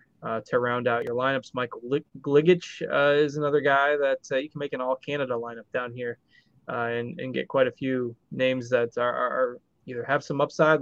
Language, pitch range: English, 130-160 Hz